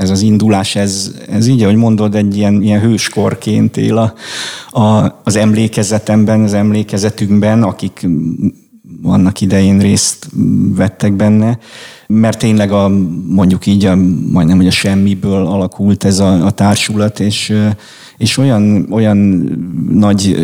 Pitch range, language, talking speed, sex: 100-105 Hz, Hungarian, 130 wpm, male